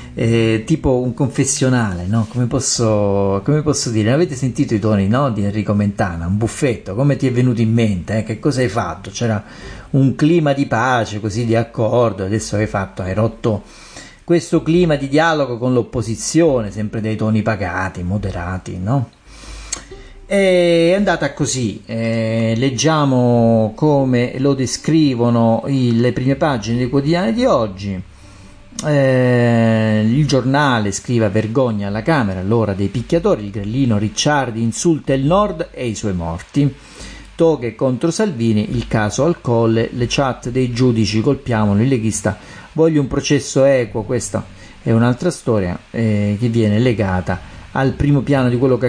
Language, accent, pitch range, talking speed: Italian, native, 105-135 Hz, 155 wpm